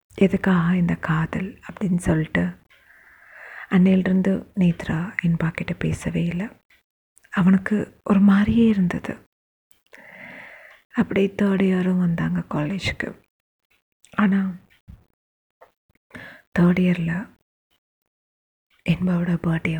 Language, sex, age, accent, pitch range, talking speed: Tamil, female, 30-49, native, 160-185 Hz, 75 wpm